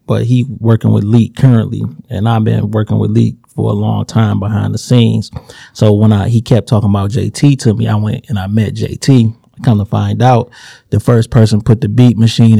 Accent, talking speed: American, 220 wpm